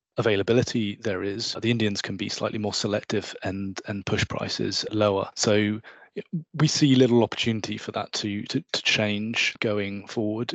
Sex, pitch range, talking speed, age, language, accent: male, 100-110 Hz, 160 wpm, 20-39, English, British